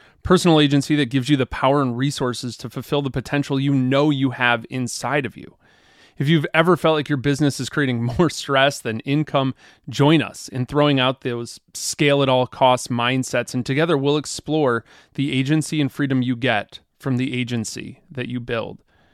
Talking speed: 190 wpm